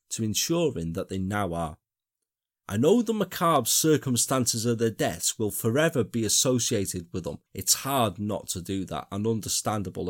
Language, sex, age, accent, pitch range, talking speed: English, male, 30-49, British, 95-150 Hz, 165 wpm